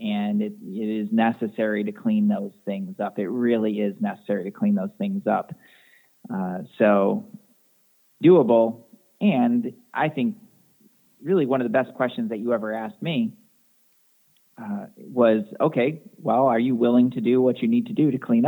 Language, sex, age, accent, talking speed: English, male, 40-59, American, 170 wpm